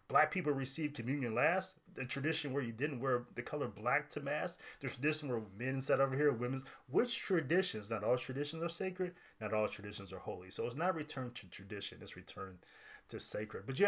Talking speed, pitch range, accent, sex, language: 210 wpm, 105-145 Hz, American, male, English